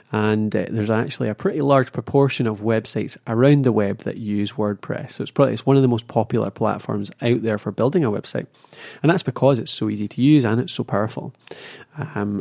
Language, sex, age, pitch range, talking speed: English, male, 30-49, 105-135 Hz, 220 wpm